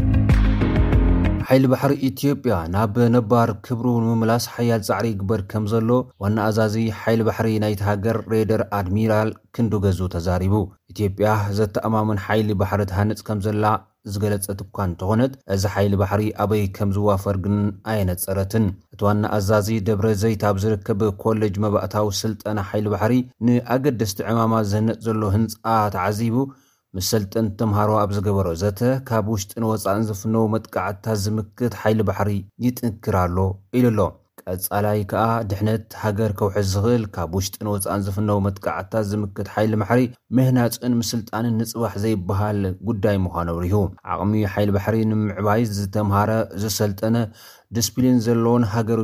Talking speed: 120 wpm